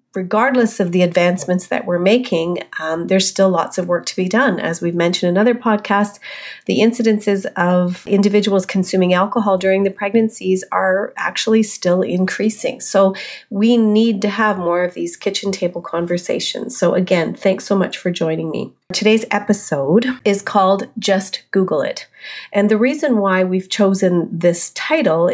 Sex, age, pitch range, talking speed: female, 40-59, 175-220 Hz, 165 wpm